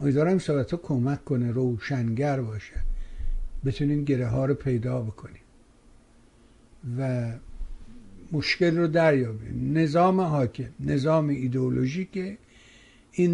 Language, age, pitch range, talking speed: Persian, 60-79, 125-170 Hz, 95 wpm